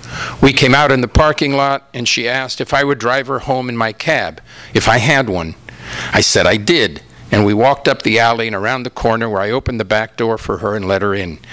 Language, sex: English, male